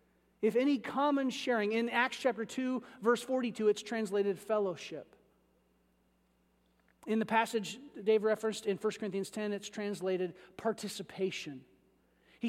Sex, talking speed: male, 125 wpm